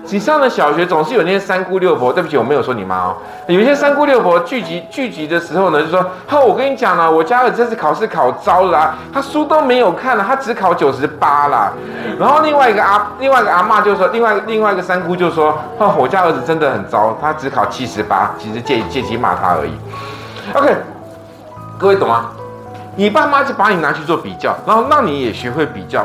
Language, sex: Chinese, male